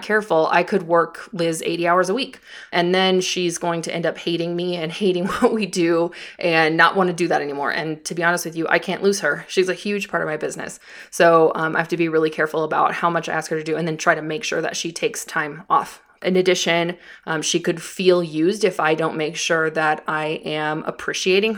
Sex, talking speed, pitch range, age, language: female, 250 wpm, 165-200 Hz, 20-39, English